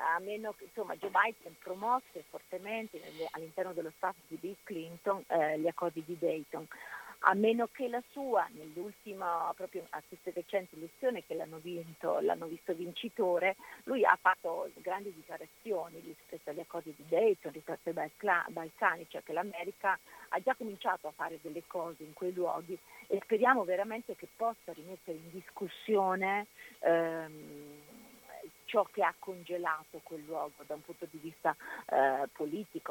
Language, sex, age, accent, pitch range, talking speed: Italian, female, 50-69, native, 165-210 Hz, 155 wpm